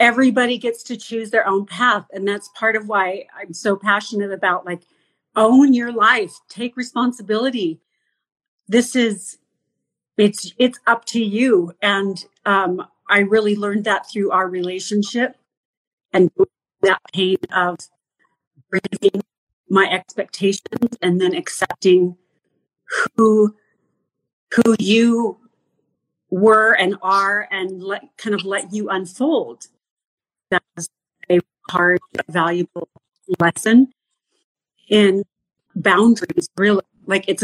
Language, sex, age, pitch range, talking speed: English, female, 40-59, 190-235 Hz, 110 wpm